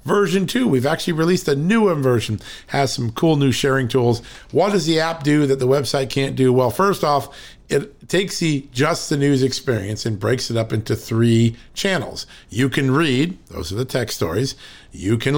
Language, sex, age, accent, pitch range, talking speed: English, male, 50-69, American, 115-140 Hz, 200 wpm